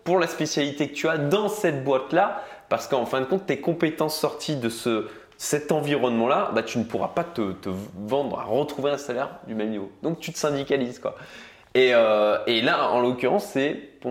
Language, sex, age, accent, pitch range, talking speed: French, male, 20-39, French, 120-155 Hz, 210 wpm